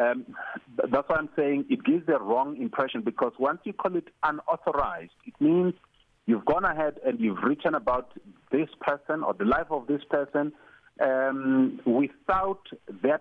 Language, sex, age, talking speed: English, male, 50-69, 165 wpm